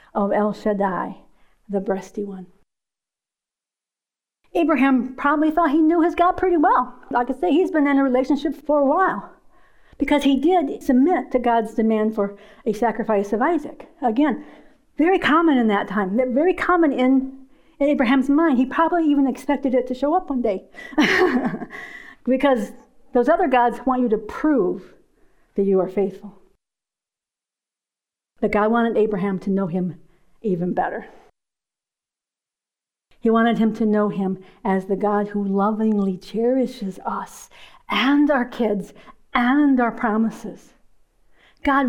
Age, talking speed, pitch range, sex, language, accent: 50-69, 145 wpm, 215-285 Hz, female, English, American